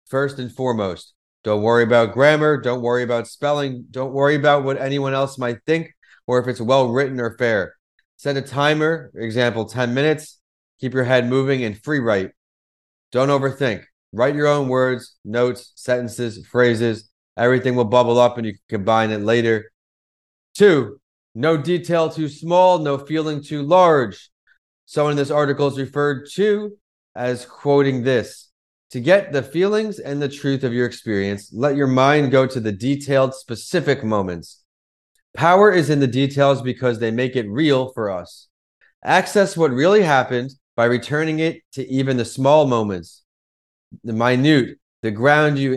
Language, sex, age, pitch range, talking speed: English, male, 30-49, 120-145 Hz, 165 wpm